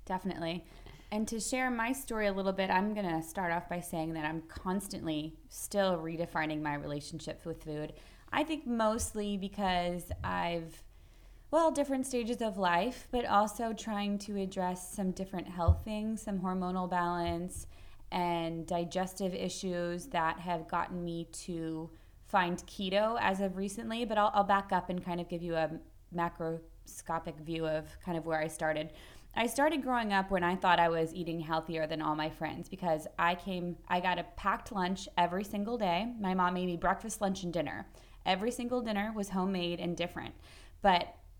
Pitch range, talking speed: 165-195 Hz, 175 wpm